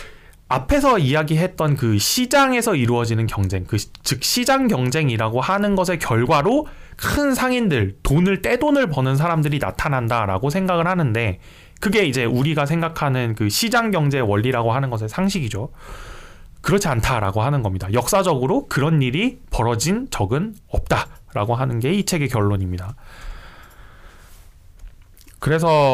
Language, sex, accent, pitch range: Korean, male, native, 105-170 Hz